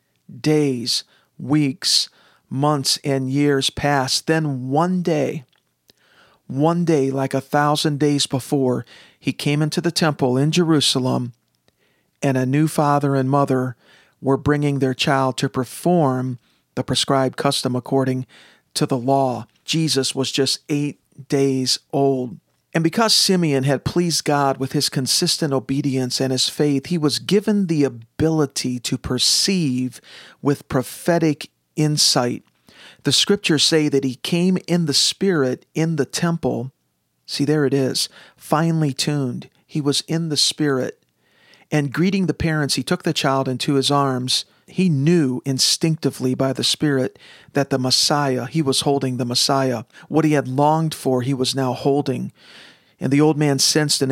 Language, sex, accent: English, male, American